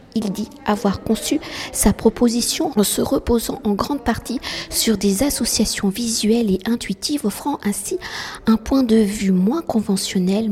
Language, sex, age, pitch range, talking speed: French, female, 50-69, 195-235 Hz, 150 wpm